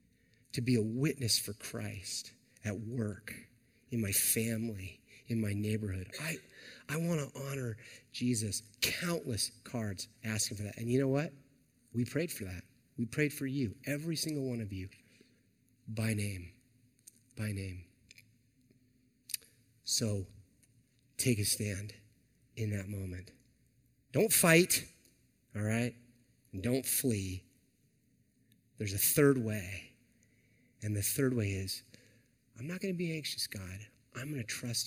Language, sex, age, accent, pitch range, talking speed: English, male, 30-49, American, 110-135 Hz, 140 wpm